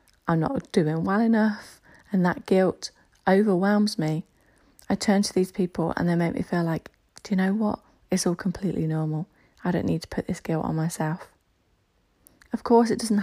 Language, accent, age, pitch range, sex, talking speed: English, British, 30-49, 170-210 Hz, female, 190 wpm